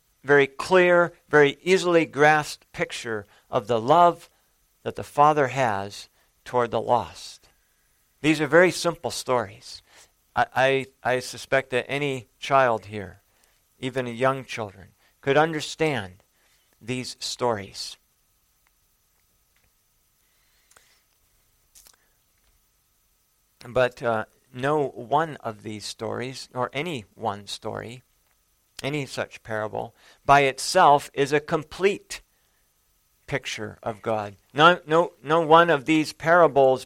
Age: 50-69